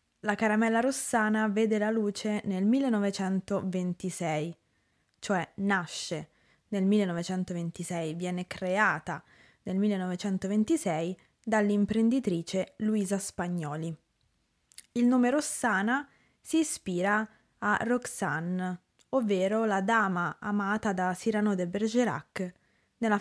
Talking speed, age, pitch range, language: 90 wpm, 20-39, 185-230 Hz, Italian